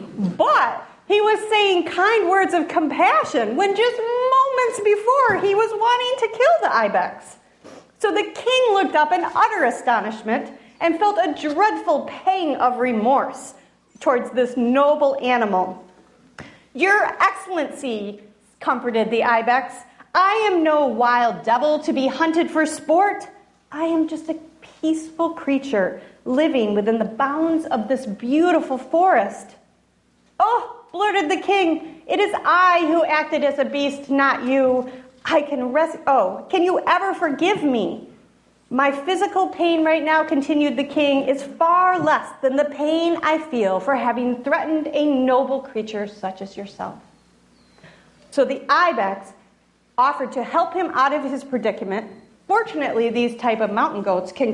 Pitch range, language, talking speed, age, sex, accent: 250-350 Hz, English, 145 wpm, 40-59, female, American